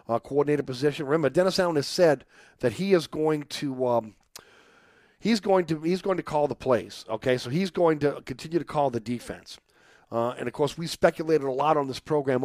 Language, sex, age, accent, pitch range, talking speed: English, male, 40-59, American, 125-150 Hz, 210 wpm